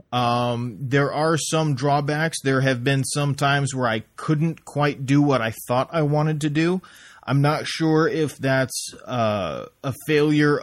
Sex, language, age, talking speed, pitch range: male, English, 30-49, 170 wpm, 120-145 Hz